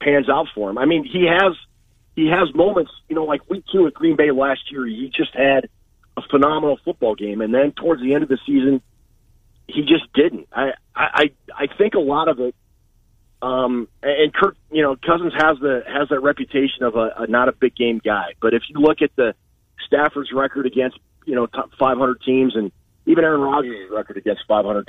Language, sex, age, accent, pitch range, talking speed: English, male, 40-59, American, 115-145 Hz, 215 wpm